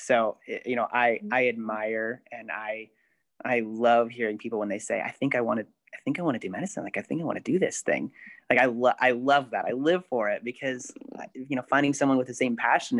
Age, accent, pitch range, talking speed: 30-49, American, 110-130 Hz, 255 wpm